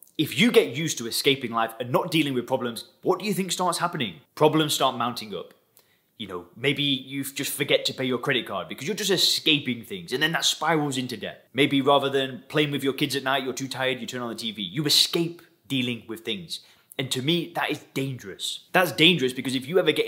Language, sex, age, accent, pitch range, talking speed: English, male, 20-39, British, 120-165 Hz, 235 wpm